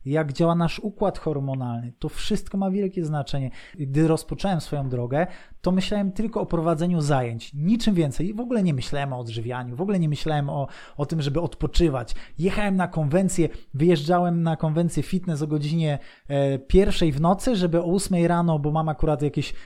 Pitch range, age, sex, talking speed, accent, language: 145-180 Hz, 20-39, male, 175 wpm, native, Polish